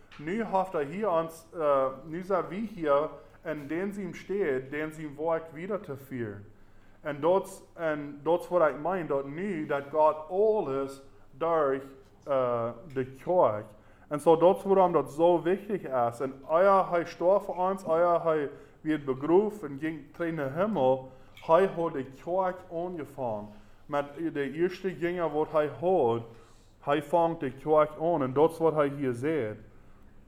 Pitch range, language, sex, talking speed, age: 130-165 Hz, English, male, 125 wpm, 20-39